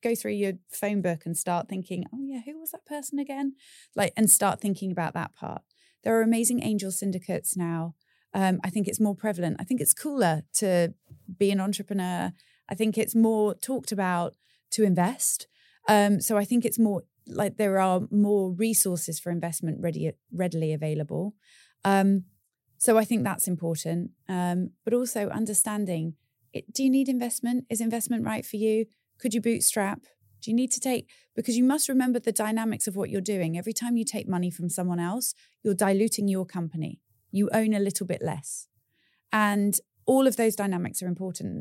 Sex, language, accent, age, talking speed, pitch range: female, English, British, 20-39, 185 wpm, 175-220 Hz